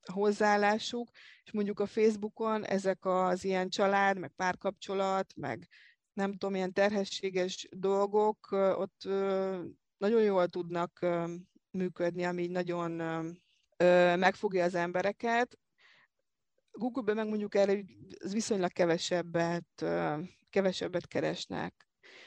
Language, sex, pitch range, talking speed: Hungarian, female, 175-205 Hz, 95 wpm